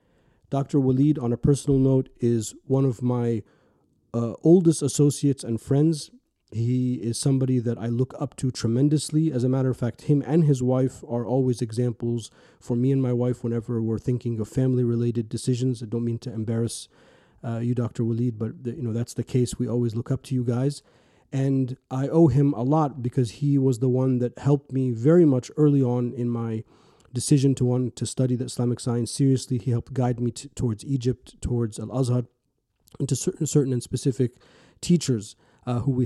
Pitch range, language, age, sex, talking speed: 120-135 Hz, English, 30-49, male, 195 wpm